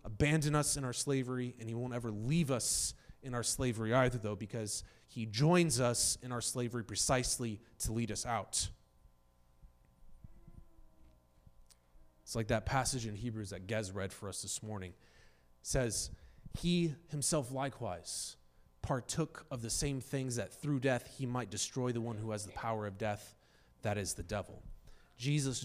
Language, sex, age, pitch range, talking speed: English, male, 30-49, 95-135 Hz, 165 wpm